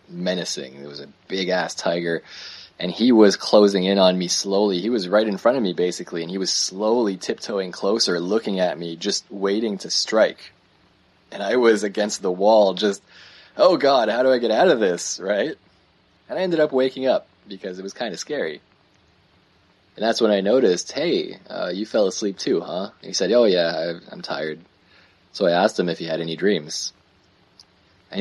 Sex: male